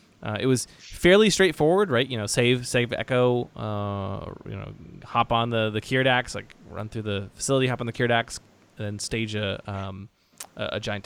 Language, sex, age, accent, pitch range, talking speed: English, male, 20-39, American, 100-120 Hz, 195 wpm